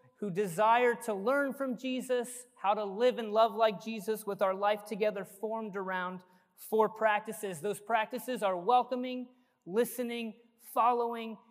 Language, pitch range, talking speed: English, 195-235 Hz, 140 wpm